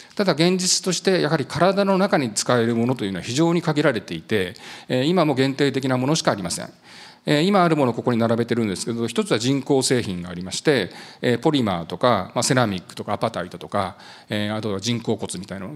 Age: 40-59